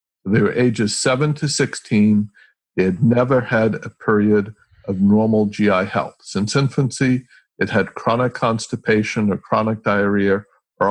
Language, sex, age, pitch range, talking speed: English, male, 50-69, 105-130 Hz, 145 wpm